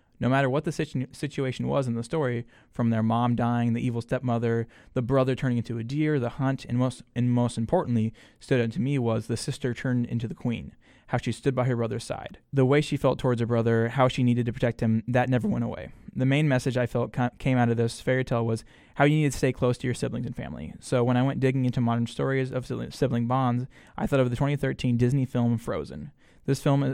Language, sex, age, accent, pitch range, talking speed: English, male, 20-39, American, 120-135 Hz, 245 wpm